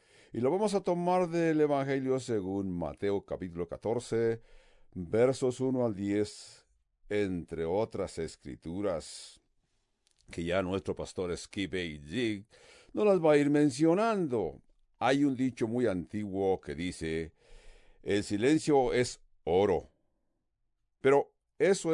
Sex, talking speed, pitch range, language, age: male, 120 wpm, 95-145 Hz, English, 60-79